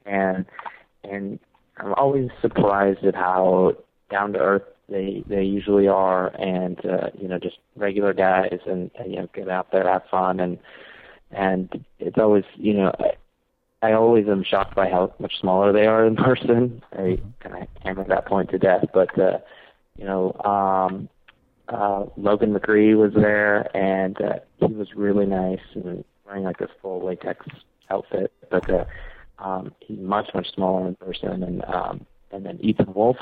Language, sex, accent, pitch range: English, male, American, 95-105 Hz